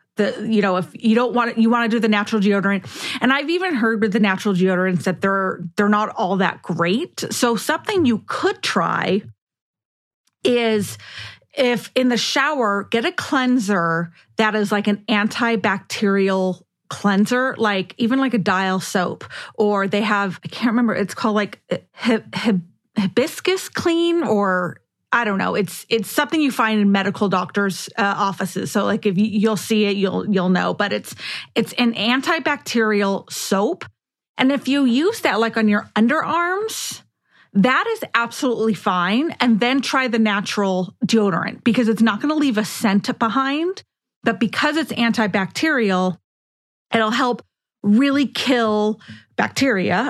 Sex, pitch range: female, 200-245 Hz